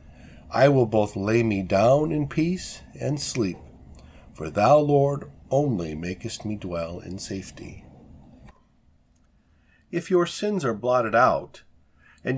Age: 50-69